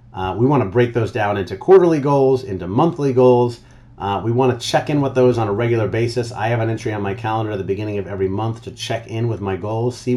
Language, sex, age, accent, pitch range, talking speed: English, male, 30-49, American, 105-130 Hz, 265 wpm